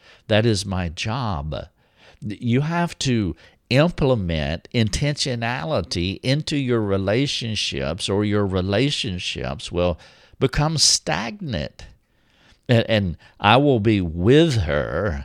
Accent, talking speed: American, 95 wpm